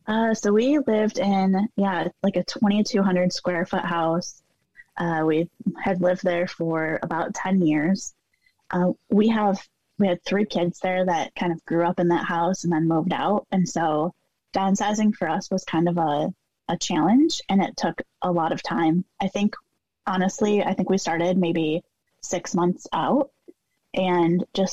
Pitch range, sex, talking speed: 175-205 Hz, female, 175 wpm